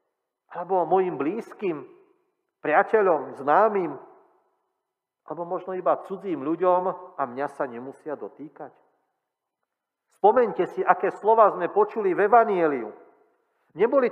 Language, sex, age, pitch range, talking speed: Slovak, male, 40-59, 145-195 Hz, 100 wpm